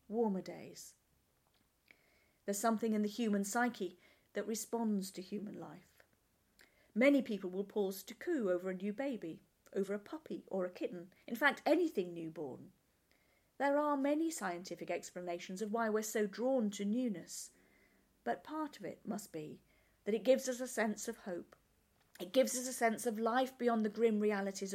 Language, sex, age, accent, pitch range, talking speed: English, female, 40-59, British, 185-235 Hz, 170 wpm